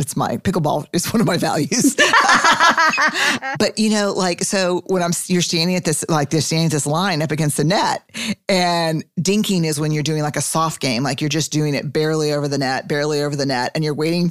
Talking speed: 230 wpm